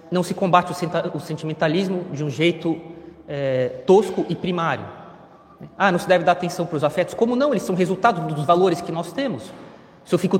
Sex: male